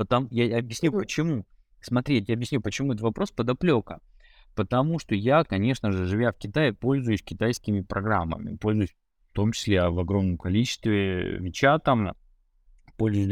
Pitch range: 95-120 Hz